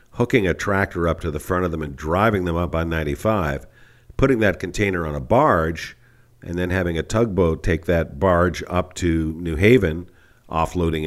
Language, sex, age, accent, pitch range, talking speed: English, male, 50-69, American, 80-95 Hz, 185 wpm